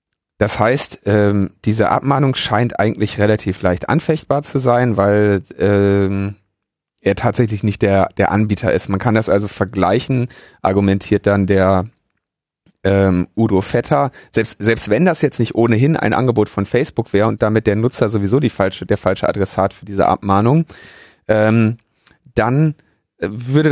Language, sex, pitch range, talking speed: German, male, 100-130 Hz, 150 wpm